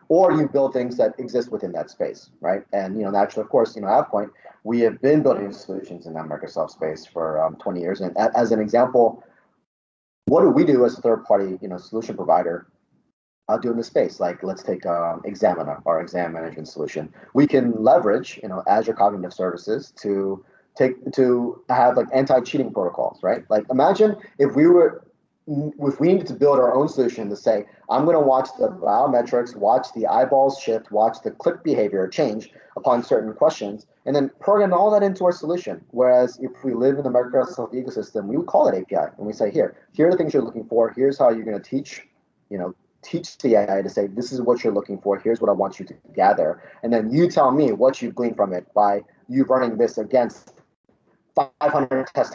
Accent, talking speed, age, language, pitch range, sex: American, 215 wpm, 30-49, English, 100-140 Hz, male